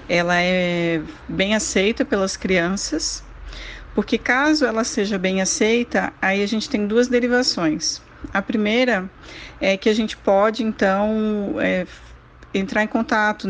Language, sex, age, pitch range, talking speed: Portuguese, female, 40-59, 190-235 Hz, 135 wpm